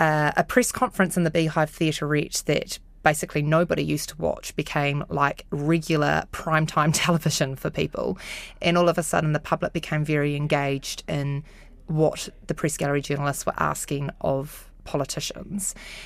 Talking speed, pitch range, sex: 155 wpm, 145-170 Hz, female